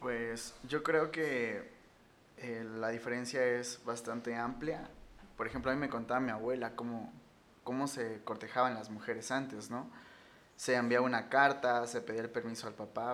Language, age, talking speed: Spanish, 20-39, 165 wpm